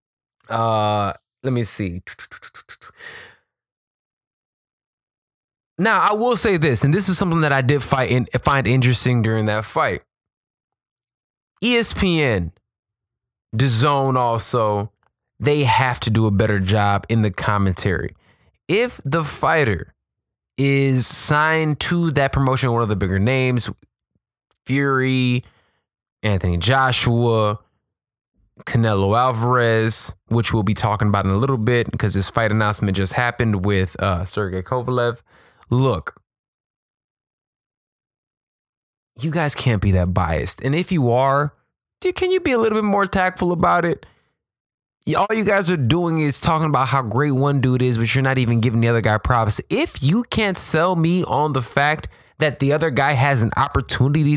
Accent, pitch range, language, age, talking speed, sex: American, 105-150 Hz, English, 20-39, 145 wpm, male